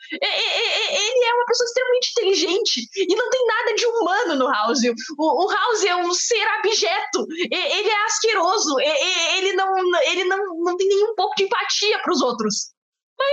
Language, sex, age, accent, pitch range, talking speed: Portuguese, female, 20-39, Brazilian, 275-360 Hz, 165 wpm